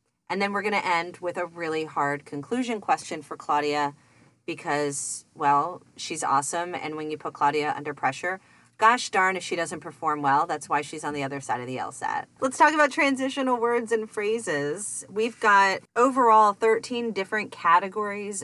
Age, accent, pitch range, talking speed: 30-49, American, 145-195 Hz, 180 wpm